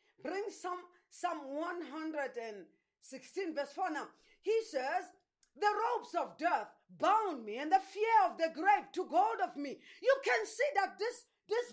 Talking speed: 160 wpm